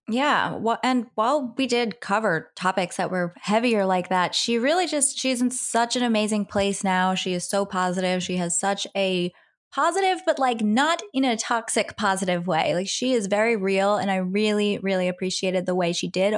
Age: 20-39